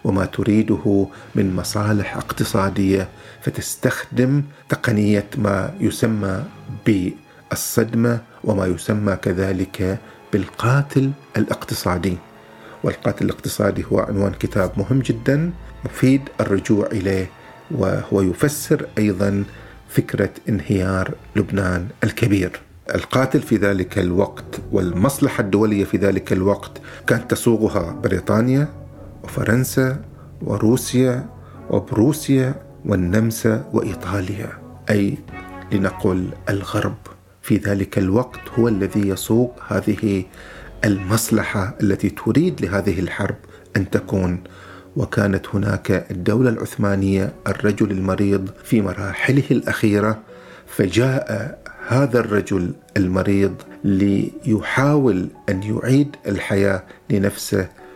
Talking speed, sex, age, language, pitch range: 85 wpm, male, 50-69, Arabic, 95-115 Hz